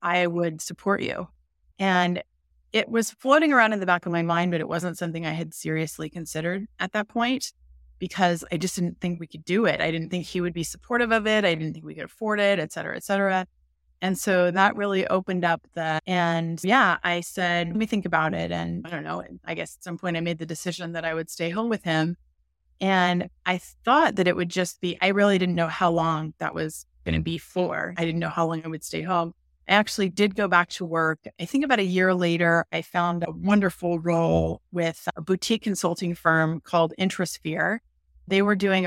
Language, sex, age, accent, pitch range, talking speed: English, female, 30-49, American, 165-185 Hz, 225 wpm